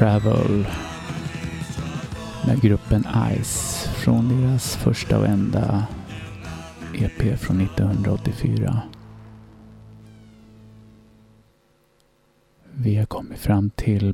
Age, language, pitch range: 30-49, German, 105-120 Hz